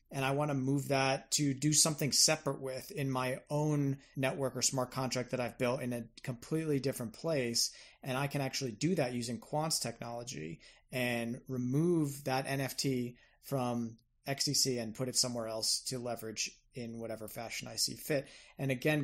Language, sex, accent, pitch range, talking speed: English, male, American, 125-145 Hz, 175 wpm